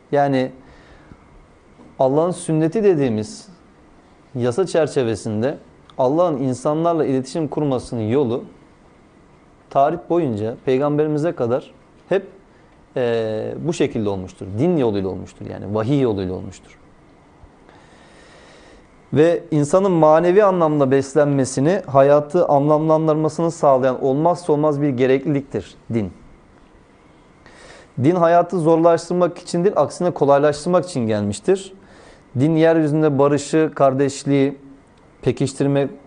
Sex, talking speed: male, 85 wpm